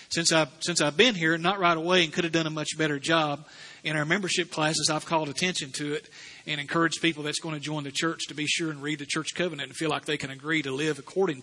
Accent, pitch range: American, 150-180 Hz